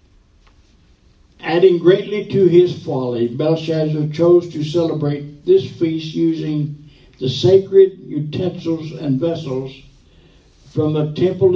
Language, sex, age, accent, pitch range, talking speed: English, male, 60-79, American, 135-175 Hz, 105 wpm